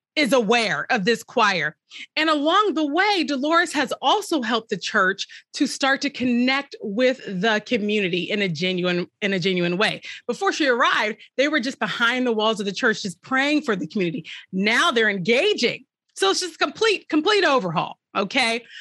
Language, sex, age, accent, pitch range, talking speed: English, female, 30-49, American, 215-315 Hz, 180 wpm